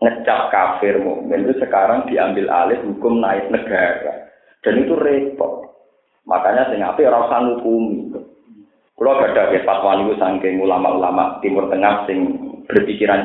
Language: Indonesian